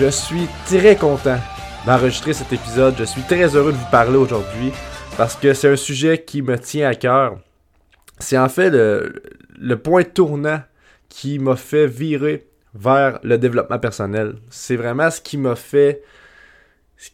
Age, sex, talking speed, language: 20-39, male, 165 wpm, French